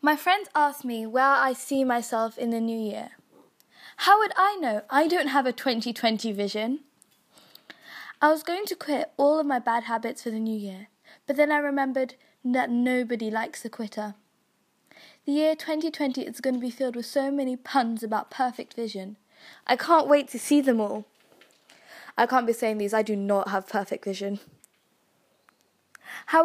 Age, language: 20-39, English